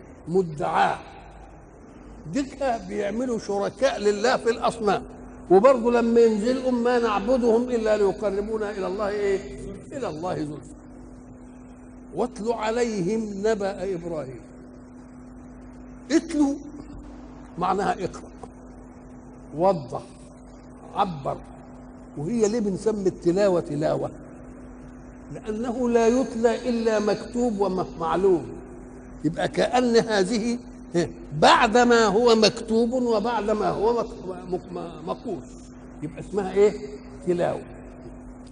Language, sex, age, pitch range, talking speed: Arabic, male, 60-79, 195-240 Hz, 85 wpm